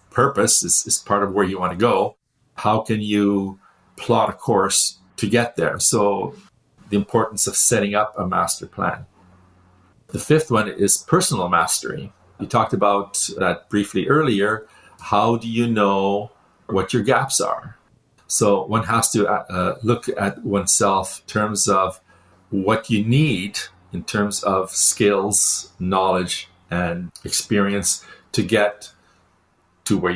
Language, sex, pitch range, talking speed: English, male, 90-105 Hz, 145 wpm